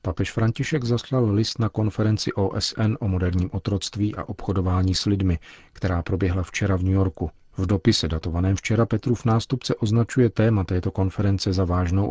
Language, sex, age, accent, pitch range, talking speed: Czech, male, 40-59, native, 95-105 Hz, 165 wpm